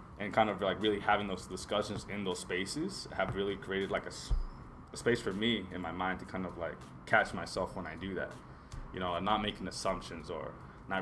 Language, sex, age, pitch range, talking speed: English, male, 20-39, 90-110 Hz, 225 wpm